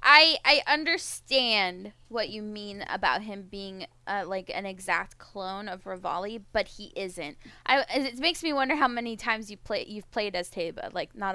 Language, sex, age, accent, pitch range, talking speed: English, female, 10-29, American, 205-275 Hz, 185 wpm